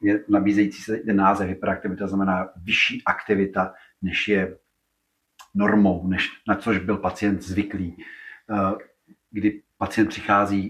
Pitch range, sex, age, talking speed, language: 100-105 Hz, male, 40-59, 110 wpm, Czech